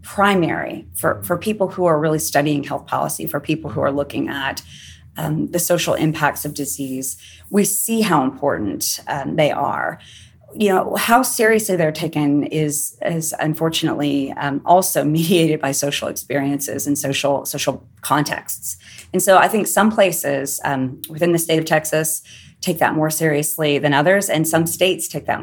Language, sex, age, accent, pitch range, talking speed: English, female, 30-49, American, 145-175 Hz, 170 wpm